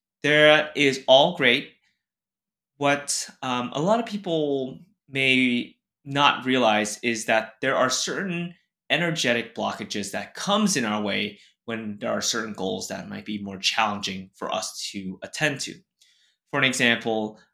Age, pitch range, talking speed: 20-39, 105-165 Hz, 145 wpm